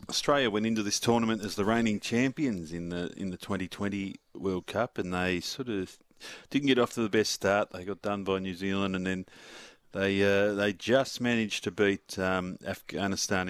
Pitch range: 95-115 Hz